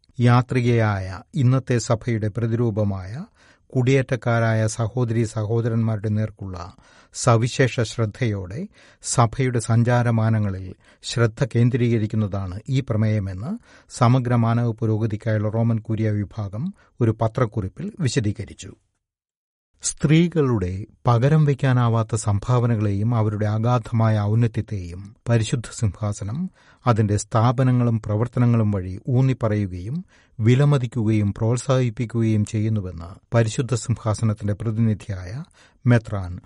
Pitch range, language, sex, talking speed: 105-125 Hz, Malayalam, male, 75 wpm